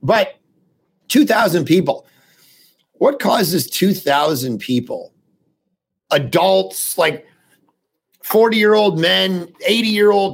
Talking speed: 70 wpm